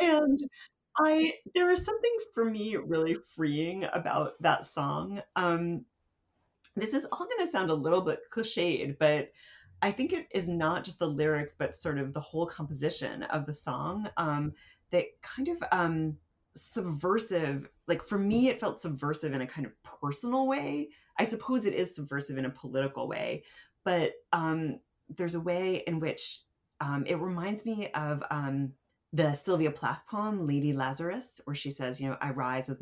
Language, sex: English, female